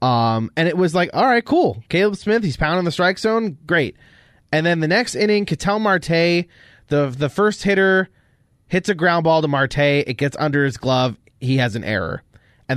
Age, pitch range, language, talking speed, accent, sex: 30-49, 125-170 Hz, English, 200 wpm, American, male